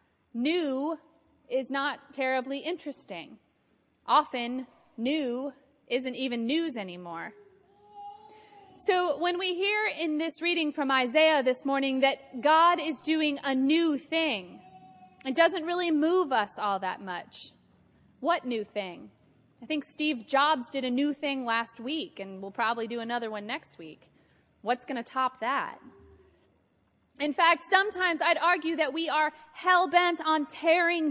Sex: female